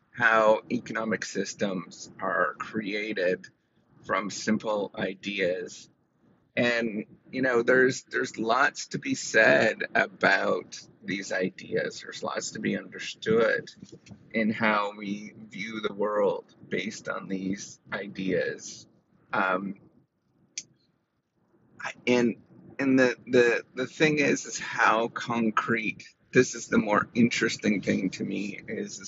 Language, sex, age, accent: English, male, 30-49, American